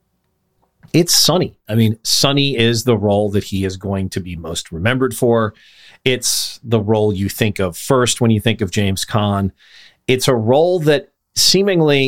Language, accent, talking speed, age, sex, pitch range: English, American, 175 wpm, 40-59, male, 105-130 Hz